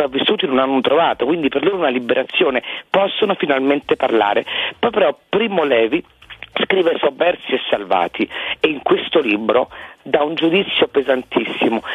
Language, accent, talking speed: Italian, native, 140 wpm